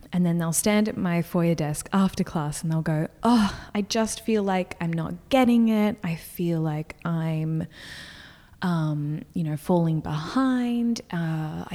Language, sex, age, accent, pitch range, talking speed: English, female, 20-39, Australian, 165-235 Hz, 165 wpm